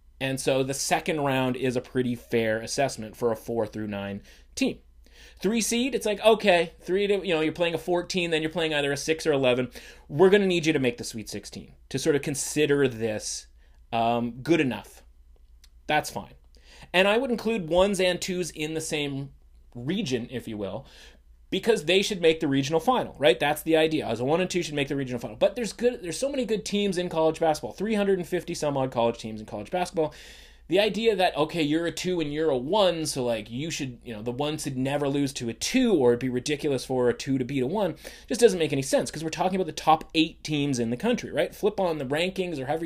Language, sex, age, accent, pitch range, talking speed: English, male, 30-49, American, 125-180 Hz, 235 wpm